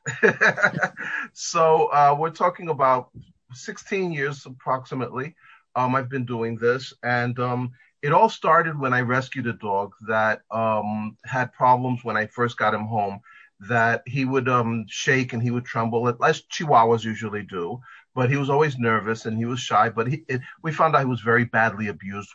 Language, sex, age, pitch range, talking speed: English, male, 40-59, 115-135 Hz, 175 wpm